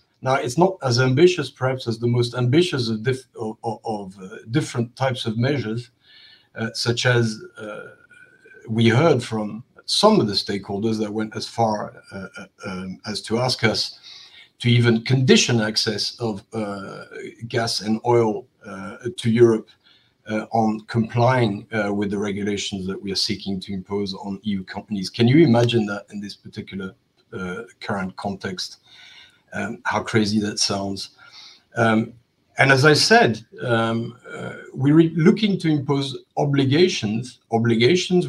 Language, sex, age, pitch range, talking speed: English, male, 50-69, 110-130 Hz, 145 wpm